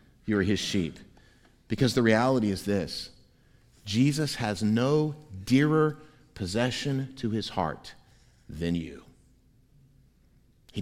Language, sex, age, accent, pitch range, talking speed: English, male, 50-69, American, 105-140 Hz, 105 wpm